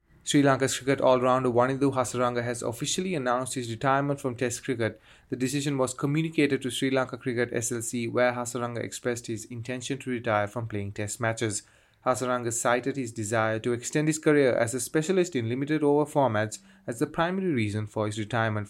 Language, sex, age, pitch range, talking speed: English, male, 30-49, 115-140 Hz, 175 wpm